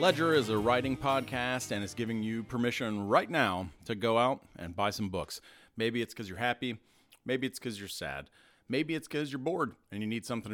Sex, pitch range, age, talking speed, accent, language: male, 105-130 Hz, 40-59, 215 wpm, American, English